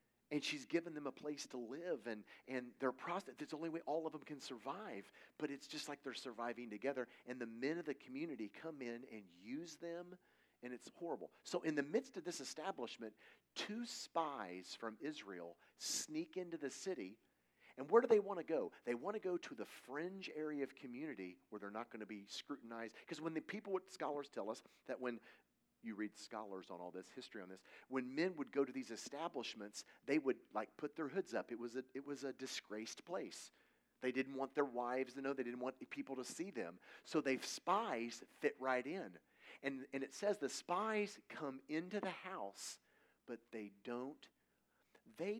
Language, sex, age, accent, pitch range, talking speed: English, male, 40-59, American, 115-160 Hz, 200 wpm